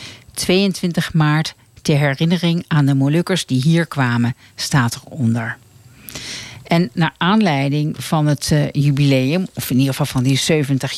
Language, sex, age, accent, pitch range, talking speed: Dutch, female, 50-69, Dutch, 130-160 Hz, 135 wpm